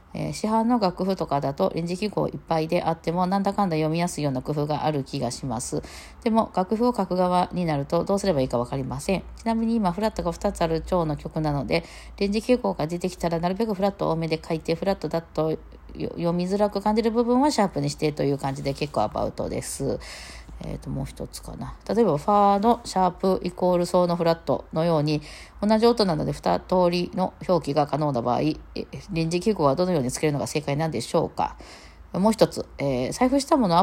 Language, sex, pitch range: Japanese, female, 150-200 Hz